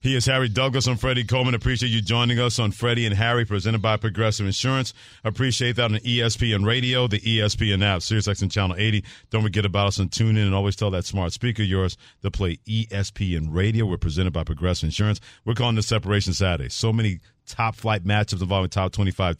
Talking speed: 205 wpm